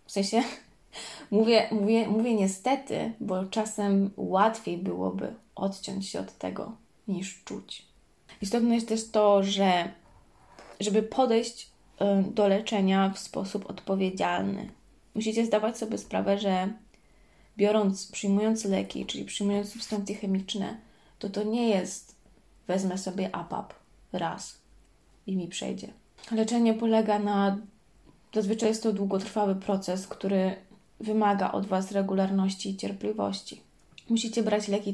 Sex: female